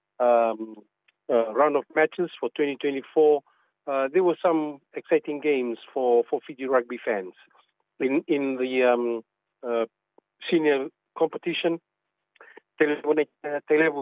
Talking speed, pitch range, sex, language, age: 110 wpm, 115-155 Hz, male, English, 50-69